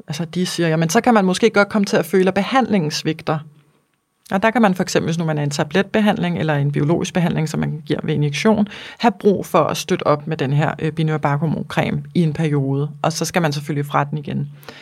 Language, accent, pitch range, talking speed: Danish, native, 160-200 Hz, 230 wpm